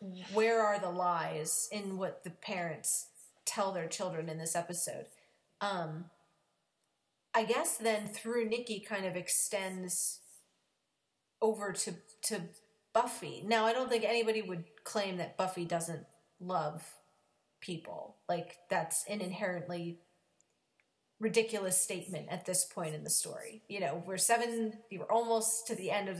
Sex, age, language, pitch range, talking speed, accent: female, 30-49, English, 175-215 Hz, 140 wpm, American